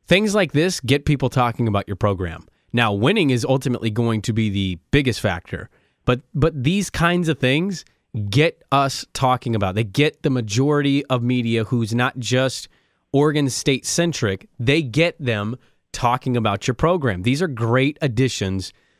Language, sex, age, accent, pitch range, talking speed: English, male, 30-49, American, 115-145 Hz, 160 wpm